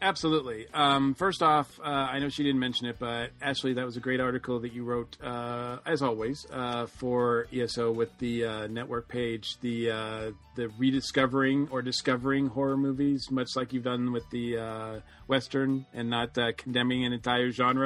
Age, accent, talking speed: 40-59, American, 185 wpm